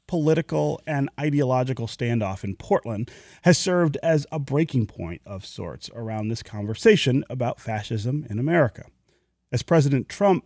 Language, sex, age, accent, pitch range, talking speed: English, male, 30-49, American, 115-160 Hz, 140 wpm